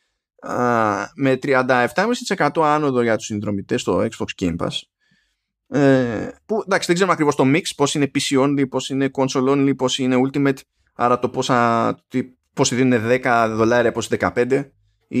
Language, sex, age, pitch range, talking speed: Greek, male, 20-39, 115-165 Hz, 140 wpm